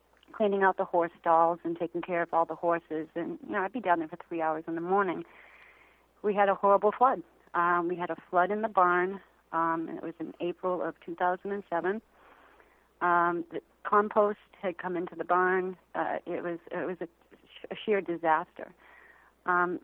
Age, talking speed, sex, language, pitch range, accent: 40-59, 195 wpm, female, English, 170-190 Hz, American